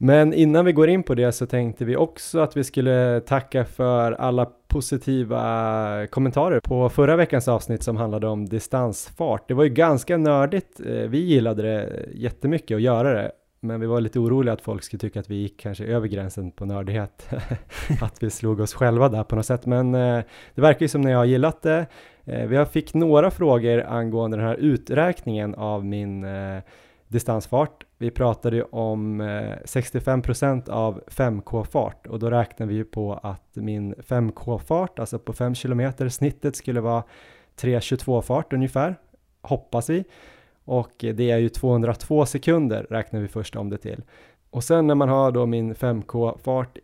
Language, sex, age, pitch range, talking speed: Swedish, male, 20-39, 110-135 Hz, 170 wpm